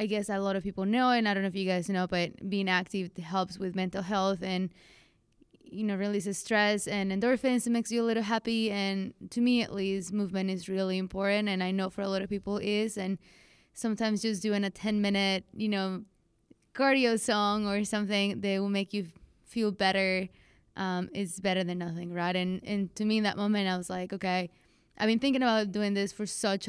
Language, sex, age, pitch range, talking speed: English, female, 20-39, 185-210 Hz, 220 wpm